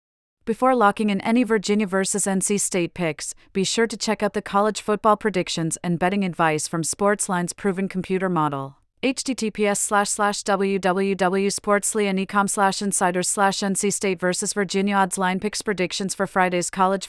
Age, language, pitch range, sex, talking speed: 30-49, English, 175-205 Hz, female, 155 wpm